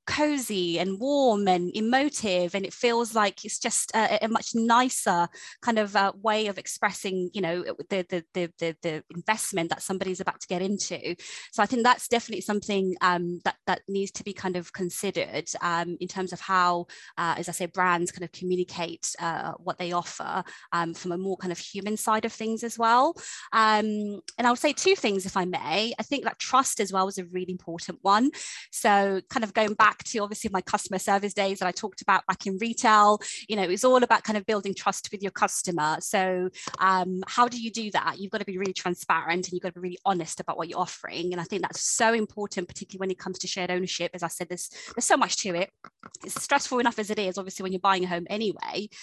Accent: British